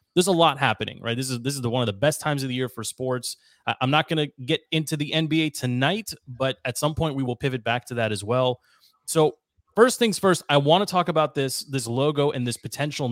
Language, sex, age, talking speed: English, male, 30-49, 260 wpm